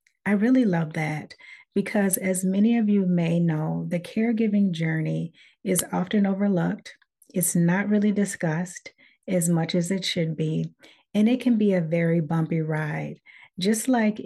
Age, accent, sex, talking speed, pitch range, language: 40-59, American, female, 155 wpm, 165-200 Hz, English